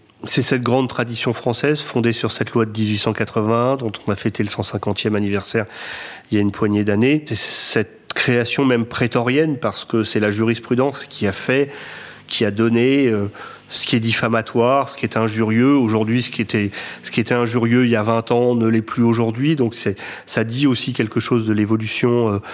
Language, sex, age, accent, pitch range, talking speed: French, male, 30-49, French, 105-120 Hz, 195 wpm